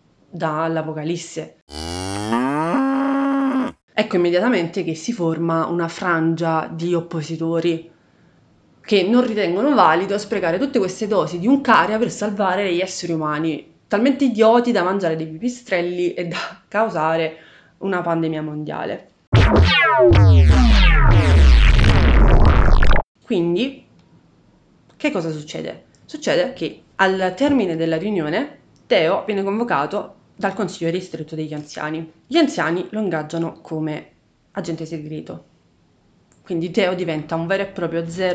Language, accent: Italian, native